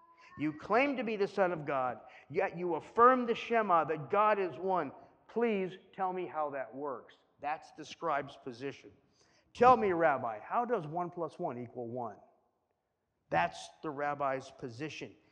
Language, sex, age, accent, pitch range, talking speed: English, male, 50-69, American, 150-200 Hz, 160 wpm